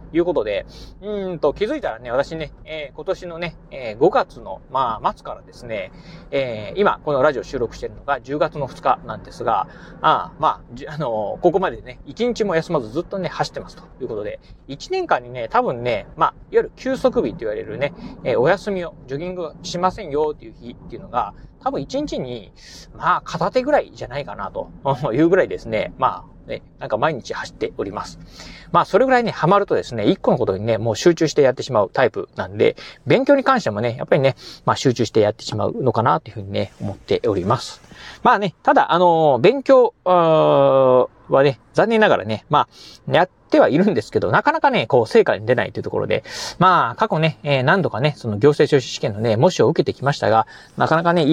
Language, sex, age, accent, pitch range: Japanese, male, 30-49, native, 135-215 Hz